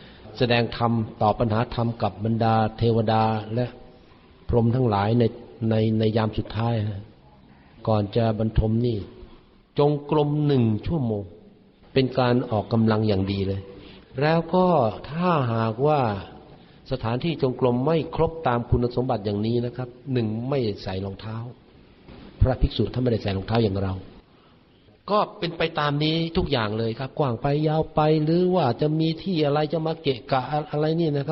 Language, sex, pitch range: Thai, male, 110-150 Hz